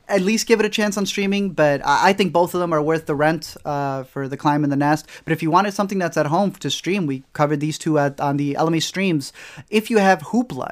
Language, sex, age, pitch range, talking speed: English, male, 20-39, 145-175 Hz, 270 wpm